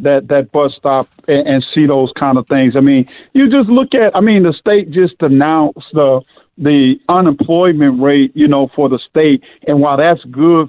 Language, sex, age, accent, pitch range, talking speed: English, male, 50-69, American, 135-165 Hz, 200 wpm